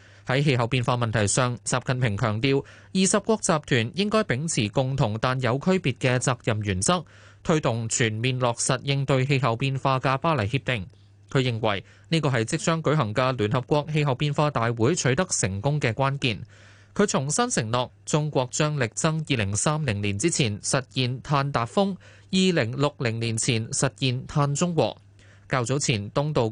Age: 20-39